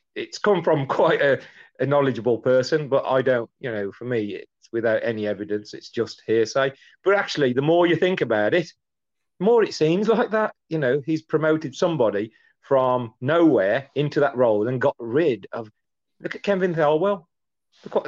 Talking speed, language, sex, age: 185 wpm, English, male, 40-59